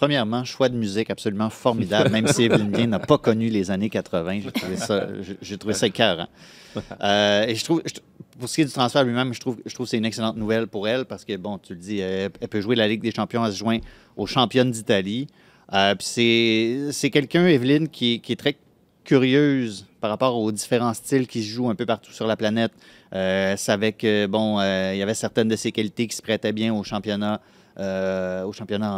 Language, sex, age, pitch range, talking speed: French, male, 30-49, 100-120 Hz, 225 wpm